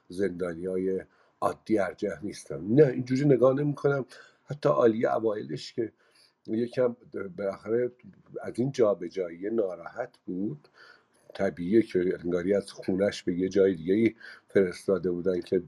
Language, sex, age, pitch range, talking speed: English, male, 50-69, 95-145 Hz, 135 wpm